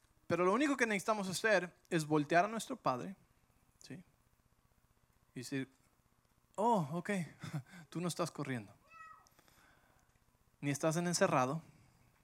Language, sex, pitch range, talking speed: English, male, 120-165 Hz, 120 wpm